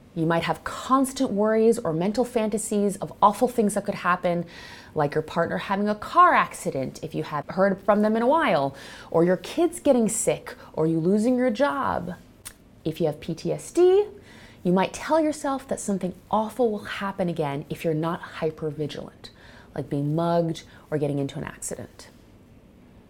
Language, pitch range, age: English, 155-225 Hz, 30-49